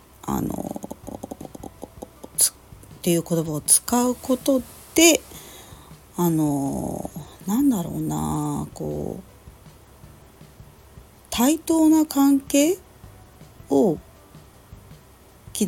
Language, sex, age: Japanese, female, 40-59